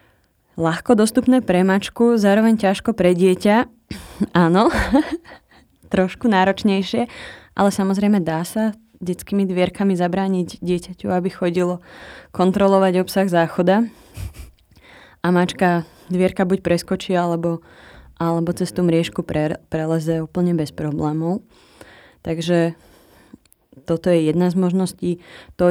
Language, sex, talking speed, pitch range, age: Slovak, female, 110 wpm, 170-200 Hz, 20-39